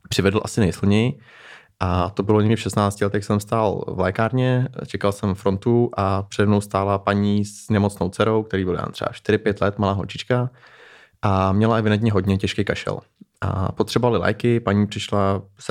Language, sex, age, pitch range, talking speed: Czech, male, 20-39, 95-110 Hz, 170 wpm